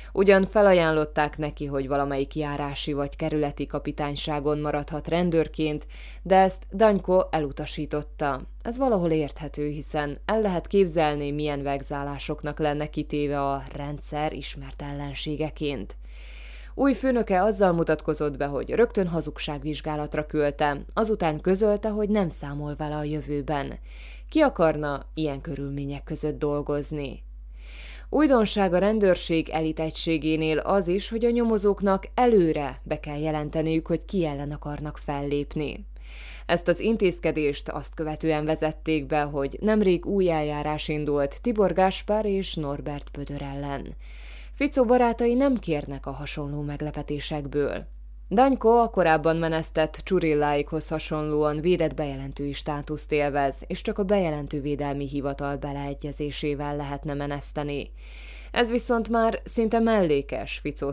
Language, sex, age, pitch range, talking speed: Hungarian, female, 20-39, 145-175 Hz, 120 wpm